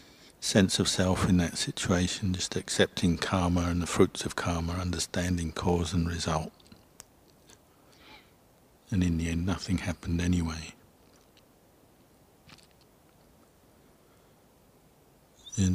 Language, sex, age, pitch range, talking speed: English, male, 60-79, 85-90 Hz, 100 wpm